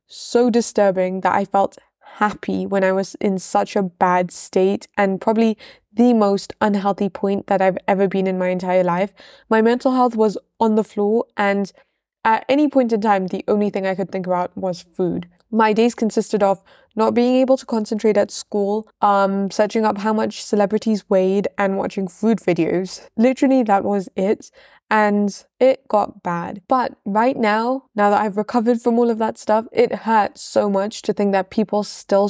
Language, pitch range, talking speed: English, 195-225 Hz, 190 wpm